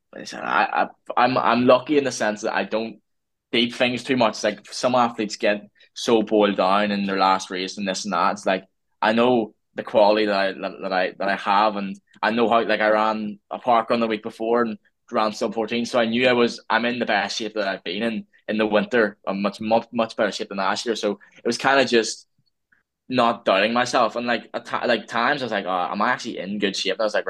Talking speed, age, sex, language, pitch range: 255 wpm, 10-29, male, English, 100-115 Hz